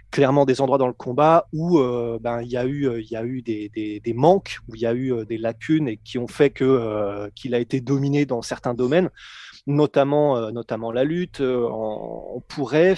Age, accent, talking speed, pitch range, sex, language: 20-39, French, 225 wpm, 120-155 Hz, male, French